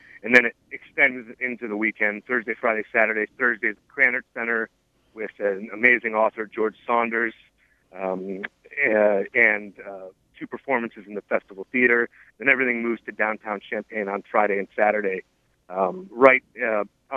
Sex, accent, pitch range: male, American, 105-125 Hz